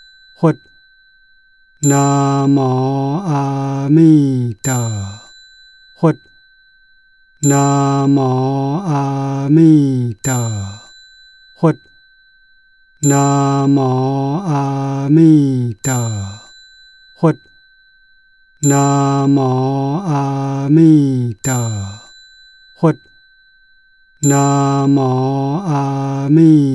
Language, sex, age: Chinese, male, 60-79